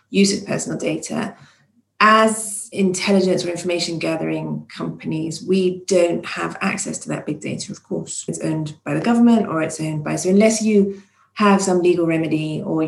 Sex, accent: female, British